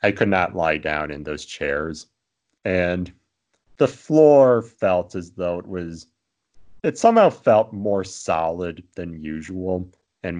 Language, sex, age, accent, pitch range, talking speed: English, male, 40-59, American, 75-95 Hz, 140 wpm